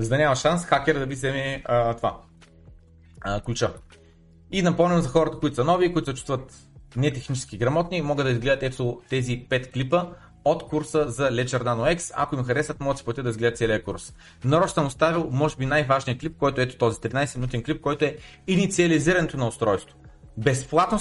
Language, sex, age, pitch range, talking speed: Bulgarian, male, 30-49, 125-165 Hz, 185 wpm